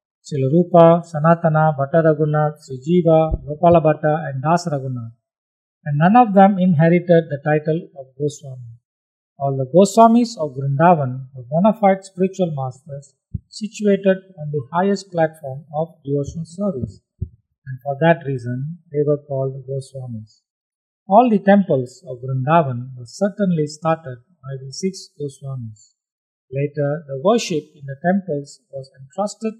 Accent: Indian